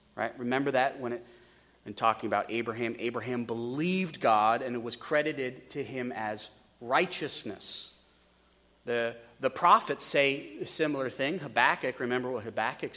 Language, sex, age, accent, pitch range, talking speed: English, male, 40-59, American, 120-165 Hz, 145 wpm